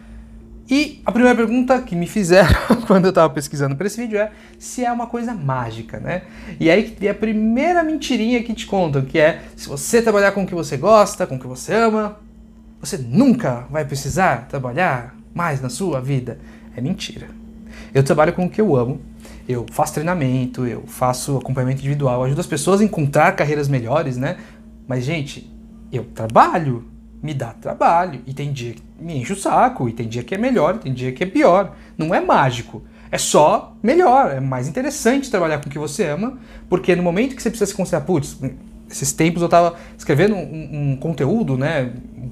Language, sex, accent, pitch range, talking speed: Portuguese, male, Brazilian, 140-220 Hz, 200 wpm